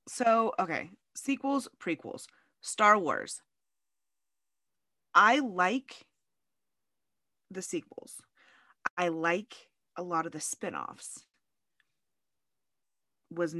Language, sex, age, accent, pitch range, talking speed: English, female, 20-39, American, 160-215 Hz, 80 wpm